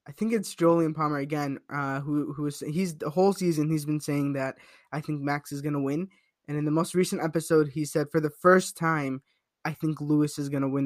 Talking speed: 230 wpm